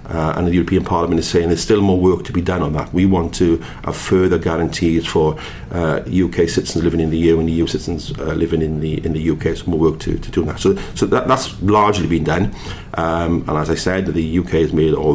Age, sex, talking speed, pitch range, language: 50-69, male, 260 wpm, 80-95 Hz, English